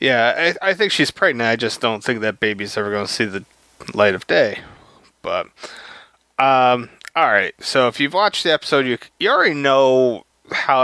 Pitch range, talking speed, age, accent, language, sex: 125-165 Hz, 185 wpm, 30-49, American, English, male